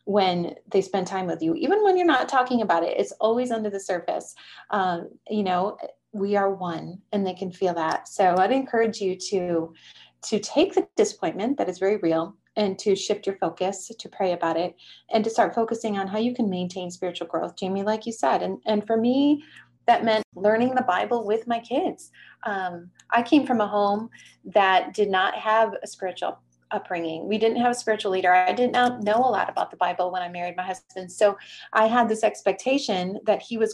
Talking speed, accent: 210 wpm, American